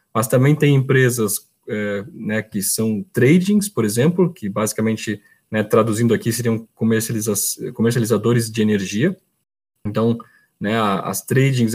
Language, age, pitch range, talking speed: Portuguese, 20-39, 110-130 Hz, 125 wpm